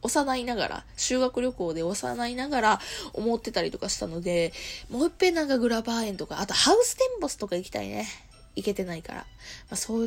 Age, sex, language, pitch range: 20-39, female, Japanese, 180-260 Hz